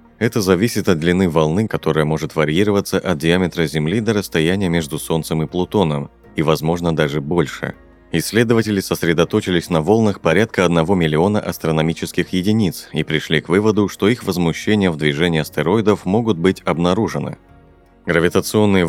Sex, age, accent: male, 30-49, native